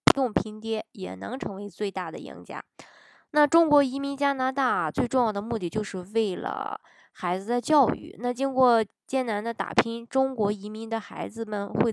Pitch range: 190-250 Hz